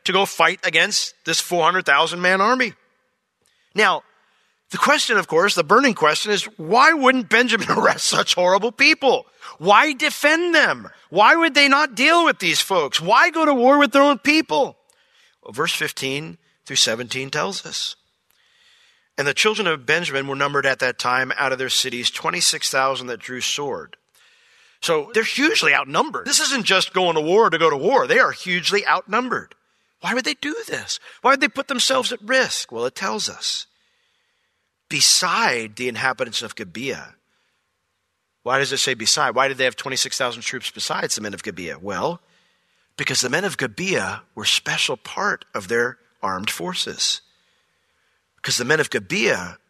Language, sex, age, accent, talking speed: English, male, 40-59, American, 170 wpm